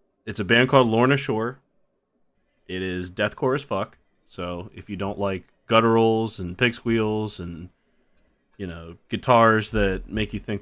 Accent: American